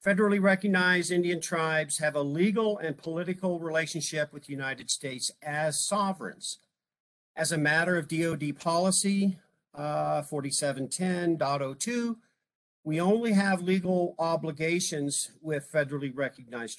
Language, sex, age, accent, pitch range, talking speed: English, male, 50-69, American, 145-180 Hz, 115 wpm